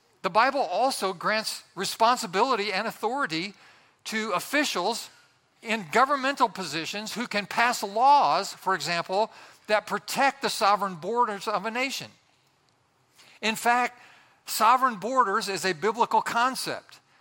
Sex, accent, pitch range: male, American, 185-235 Hz